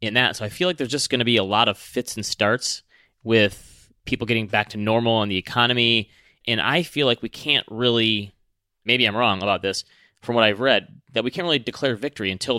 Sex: male